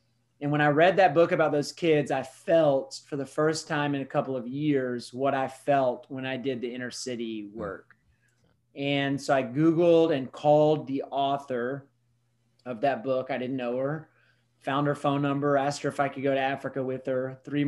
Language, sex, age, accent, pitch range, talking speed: English, male, 30-49, American, 130-150 Hz, 205 wpm